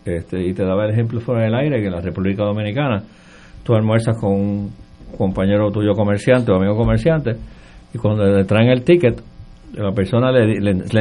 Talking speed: 190 wpm